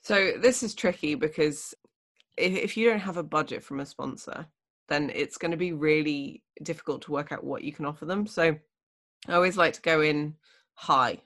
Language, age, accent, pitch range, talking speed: English, 20-39, British, 150-175 Hz, 195 wpm